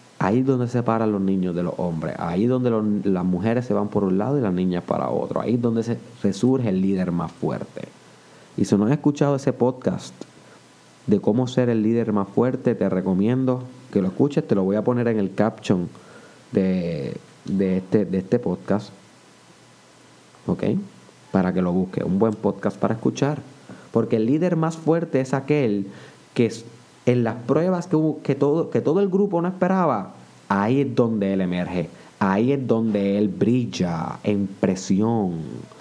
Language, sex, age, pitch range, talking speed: Spanish, male, 30-49, 95-125 Hz, 190 wpm